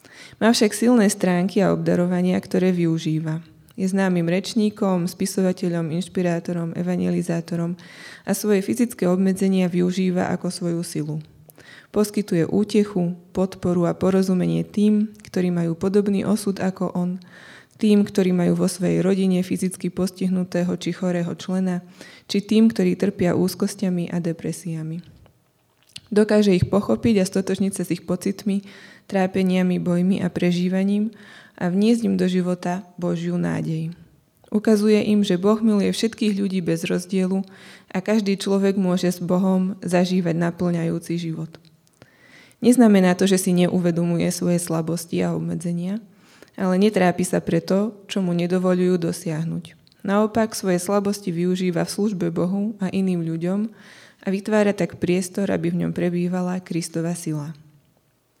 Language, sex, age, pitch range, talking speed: Slovak, female, 20-39, 175-195 Hz, 130 wpm